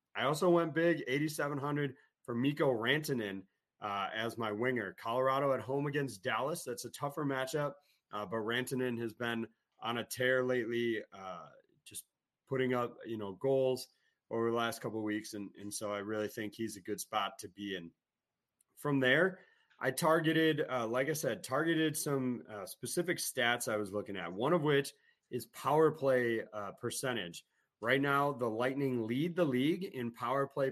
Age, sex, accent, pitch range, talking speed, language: 30-49, male, American, 115-150 Hz, 180 wpm, English